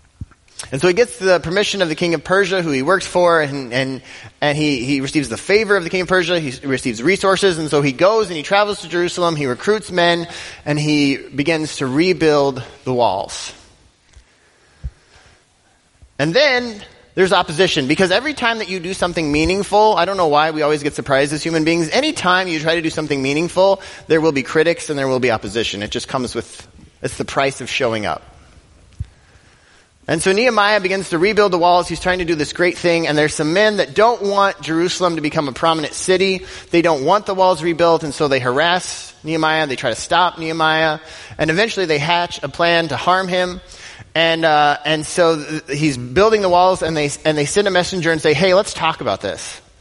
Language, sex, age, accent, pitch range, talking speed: English, male, 30-49, American, 140-180 Hz, 210 wpm